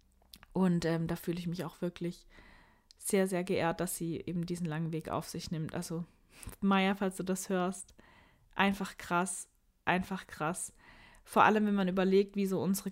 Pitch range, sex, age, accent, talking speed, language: 180-210 Hz, female, 20-39, German, 175 wpm, German